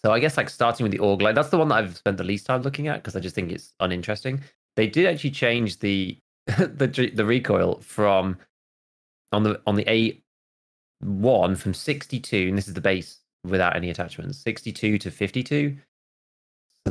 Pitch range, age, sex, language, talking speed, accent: 90-120 Hz, 20-39, male, English, 205 wpm, British